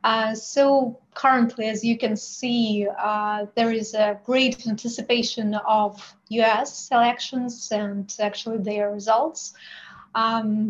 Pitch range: 210-235 Hz